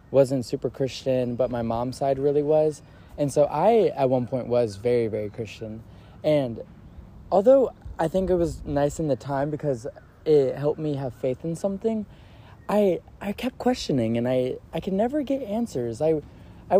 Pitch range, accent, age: 115-165 Hz, American, 20-39